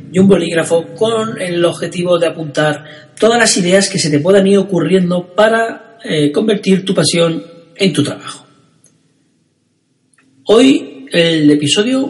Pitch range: 140-185 Hz